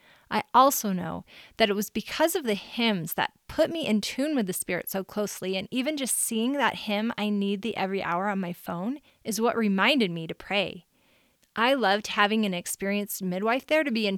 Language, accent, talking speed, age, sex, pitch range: English, American, 210 wpm, 30-49, female, 190-235 Hz